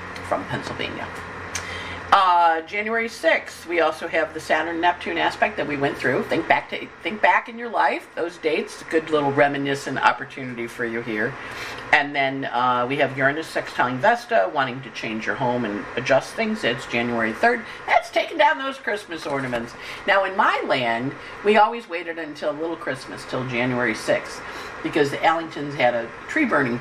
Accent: American